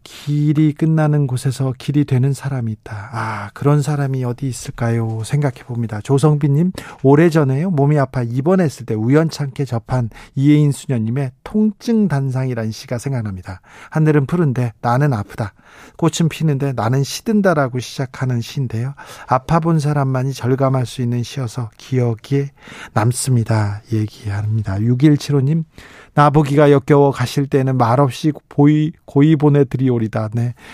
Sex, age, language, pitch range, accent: male, 40-59, Korean, 125-155 Hz, native